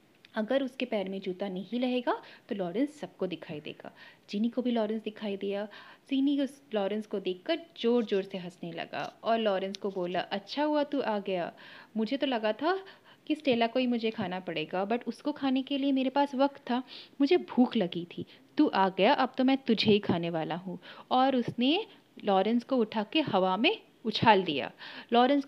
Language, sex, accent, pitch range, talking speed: Hindi, female, native, 200-280 Hz, 195 wpm